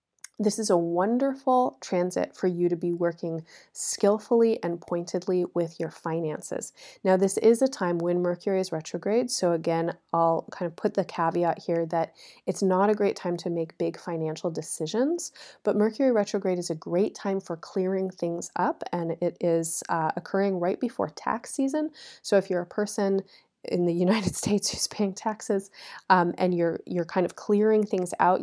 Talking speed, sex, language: 180 wpm, female, English